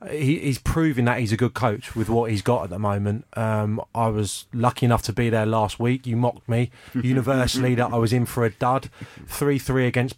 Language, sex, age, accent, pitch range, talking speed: English, male, 30-49, British, 110-135 Hz, 230 wpm